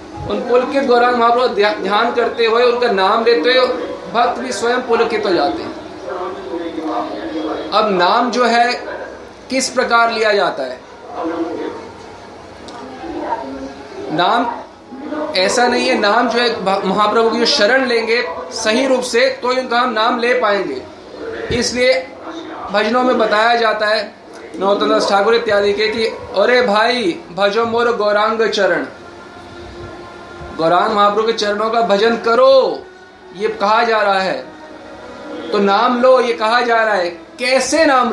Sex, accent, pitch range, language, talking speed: male, native, 210-250 Hz, Hindi, 135 wpm